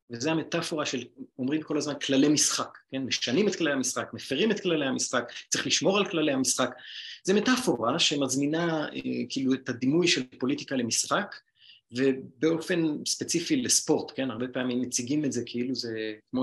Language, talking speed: Hebrew, 155 wpm